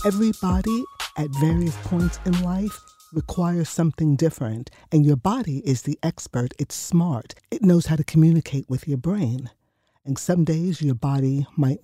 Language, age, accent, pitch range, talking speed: English, 50-69, American, 135-180 Hz, 155 wpm